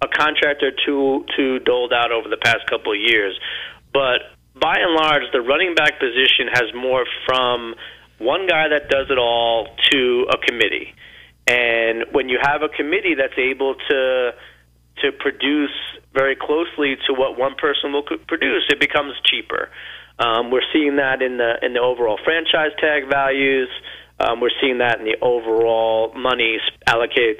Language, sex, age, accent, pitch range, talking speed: English, male, 30-49, American, 120-155 Hz, 165 wpm